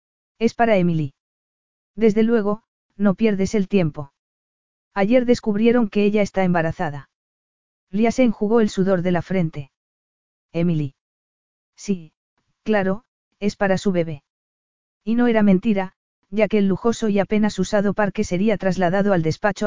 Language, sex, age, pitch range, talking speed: Spanish, female, 40-59, 175-215 Hz, 140 wpm